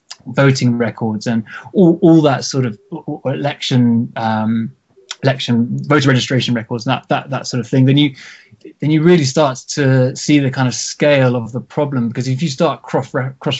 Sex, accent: male, British